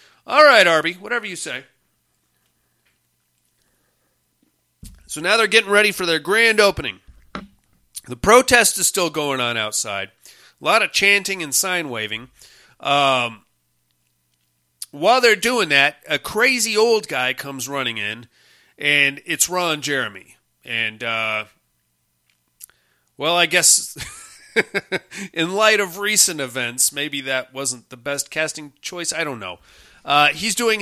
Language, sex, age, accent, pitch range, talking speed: English, male, 30-49, American, 130-200 Hz, 130 wpm